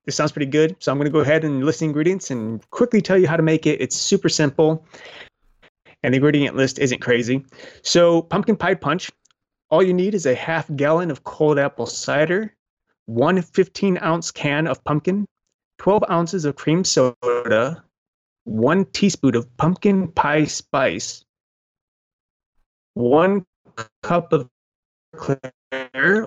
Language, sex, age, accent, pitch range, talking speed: English, male, 30-49, American, 140-185 Hz, 150 wpm